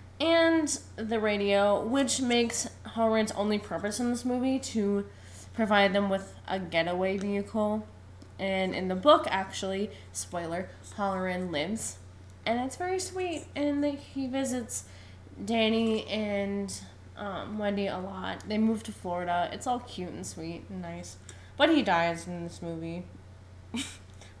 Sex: female